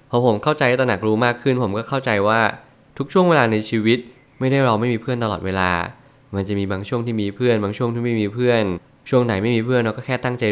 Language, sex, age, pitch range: Thai, male, 20-39, 105-125 Hz